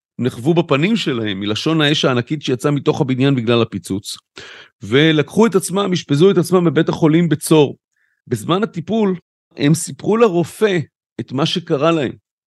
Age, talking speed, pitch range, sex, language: 40-59, 140 wpm, 140-180 Hz, male, Hebrew